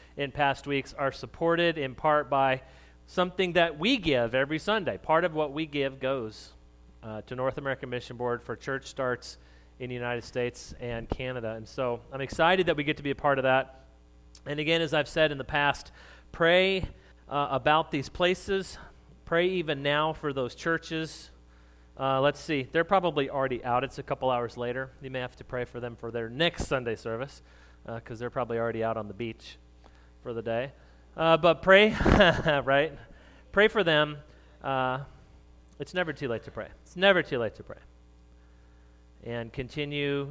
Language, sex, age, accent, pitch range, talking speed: English, male, 30-49, American, 115-155 Hz, 185 wpm